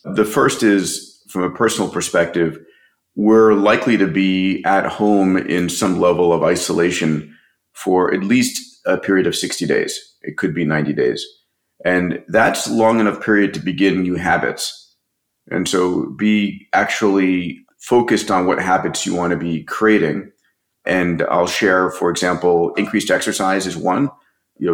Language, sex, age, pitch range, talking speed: English, male, 40-59, 85-105 Hz, 155 wpm